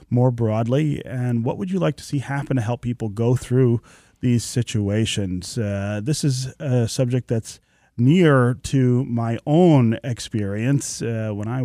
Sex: male